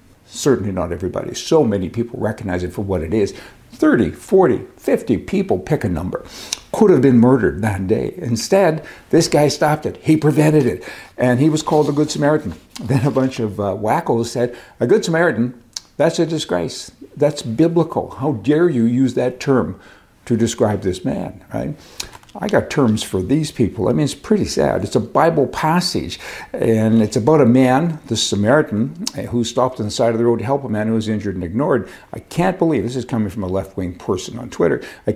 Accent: American